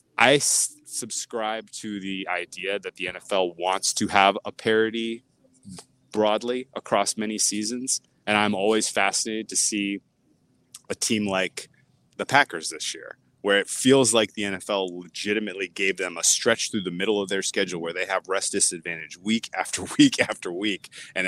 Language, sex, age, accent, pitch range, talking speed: English, male, 20-39, American, 95-110 Hz, 165 wpm